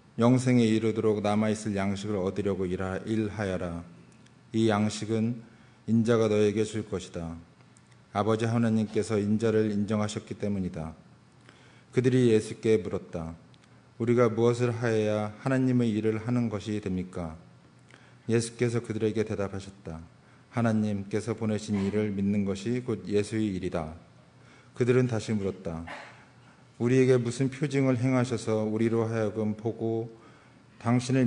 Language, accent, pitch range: Korean, native, 100-115 Hz